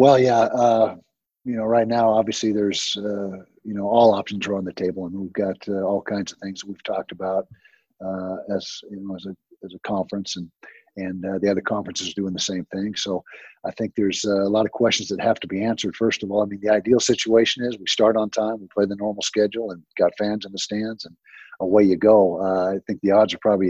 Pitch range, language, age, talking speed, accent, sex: 95-110 Hz, English, 50-69, 250 wpm, American, male